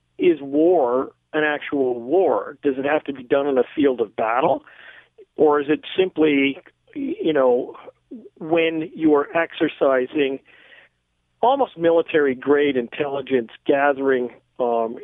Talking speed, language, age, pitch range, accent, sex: 125 wpm, English, 50-69, 135-165 Hz, American, male